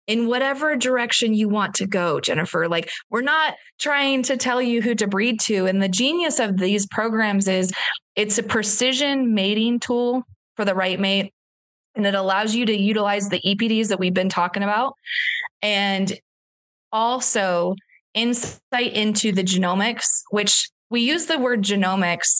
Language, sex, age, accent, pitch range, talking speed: English, female, 20-39, American, 190-235 Hz, 160 wpm